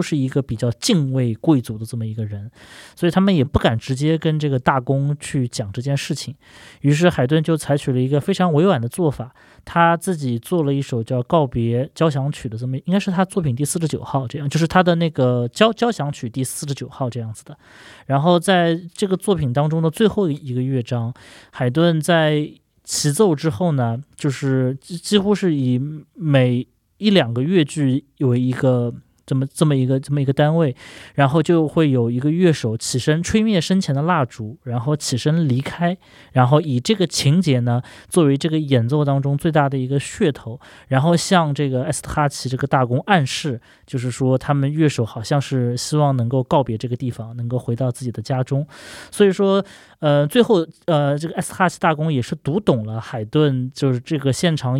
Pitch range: 125-165 Hz